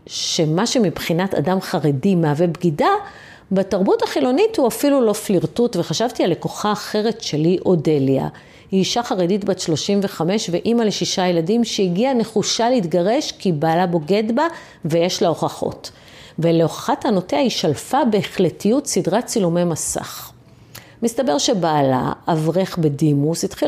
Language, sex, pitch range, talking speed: Hebrew, female, 165-220 Hz, 120 wpm